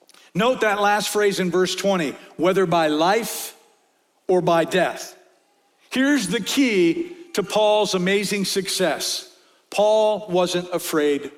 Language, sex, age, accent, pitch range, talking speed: English, male, 50-69, American, 195-270 Hz, 120 wpm